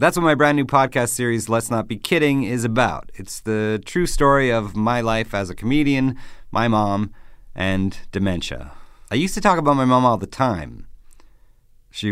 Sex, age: male, 40-59